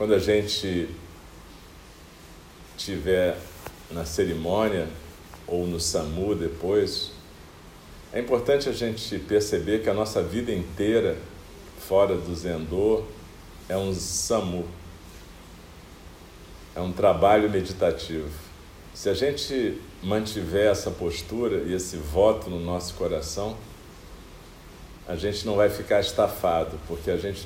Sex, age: male, 50-69